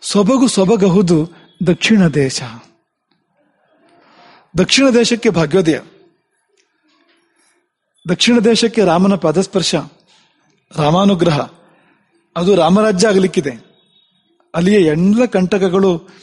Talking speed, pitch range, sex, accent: 75 wpm, 165-230 Hz, male, Indian